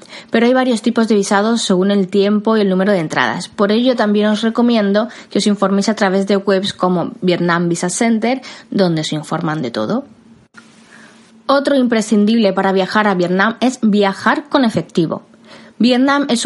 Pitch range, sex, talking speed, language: 195-240 Hz, female, 170 wpm, Spanish